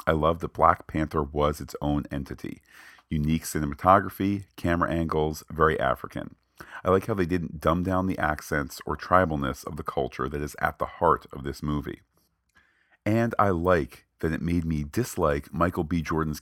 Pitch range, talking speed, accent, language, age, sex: 75-85 Hz, 175 wpm, American, English, 40-59, male